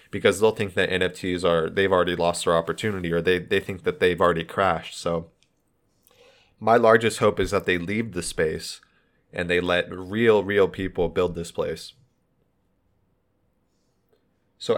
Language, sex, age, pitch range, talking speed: English, male, 30-49, 85-100 Hz, 160 wpm